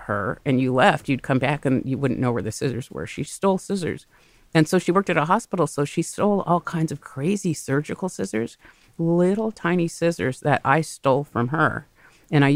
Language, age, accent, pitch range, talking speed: English, 50-69, American, 130-170 Hz, 210 wpm